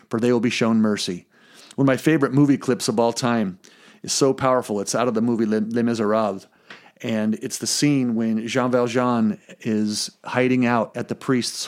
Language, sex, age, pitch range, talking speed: English, male, 40-59, 110-140 Hz, 195 wpm